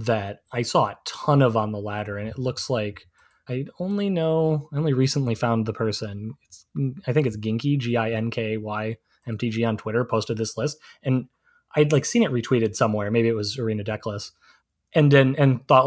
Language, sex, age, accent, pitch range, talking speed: English, male, 20-39, American, 110-135 Hz, 185 wpm